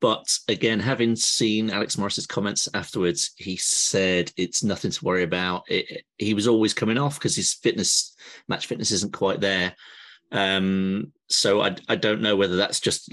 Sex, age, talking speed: male, 30-49, 180 wpm